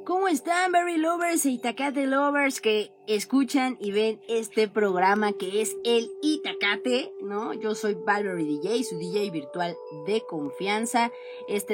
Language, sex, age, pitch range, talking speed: Spanish, female, 20-39, 175-260 Hz, 145 wpm